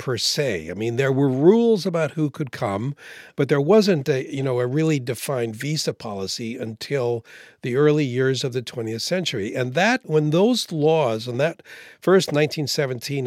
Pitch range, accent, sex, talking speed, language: 125-165 Hz, American, male, 175 wpm, English